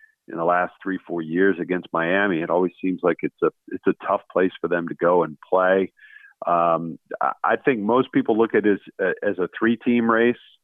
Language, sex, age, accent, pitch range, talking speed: English, male, 50-69, American, 95-110 Hz, 215 wpm